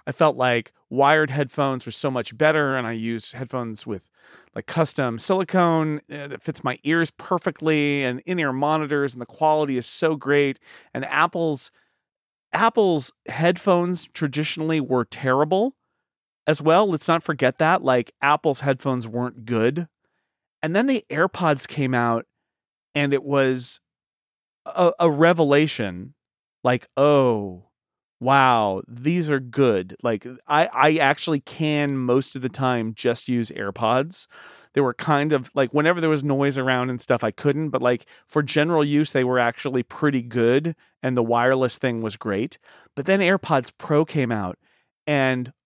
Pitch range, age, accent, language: 125-155 Hz, 30-49, American, English